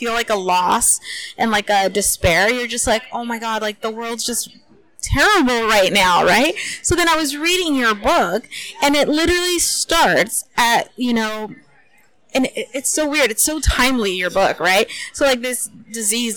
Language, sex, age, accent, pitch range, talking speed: English, female, 30-49, American, 205-260 Hz, 185 wpm